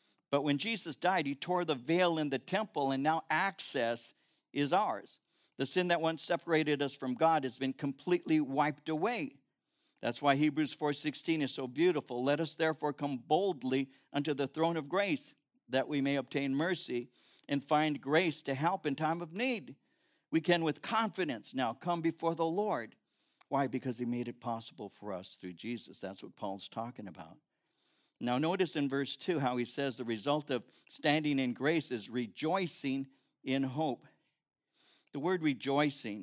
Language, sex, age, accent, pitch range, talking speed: English, male, 60-79, American, 125-165 Hz, 175 wpm